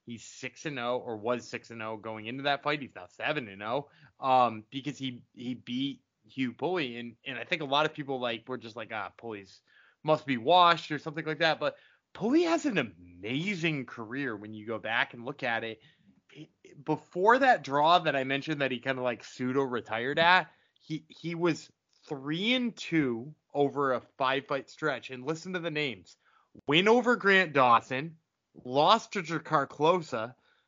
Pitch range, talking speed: 130-195 Hz, 190 wpm